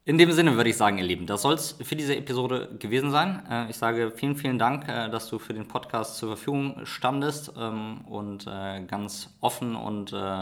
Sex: male